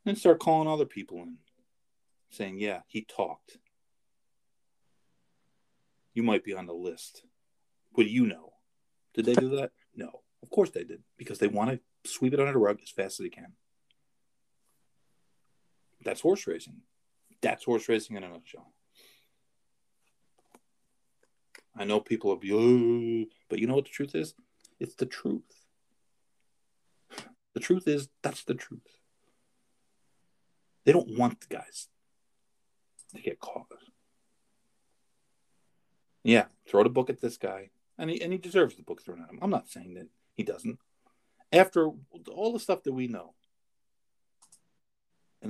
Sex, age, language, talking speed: male, 40-59, English, 145 wpm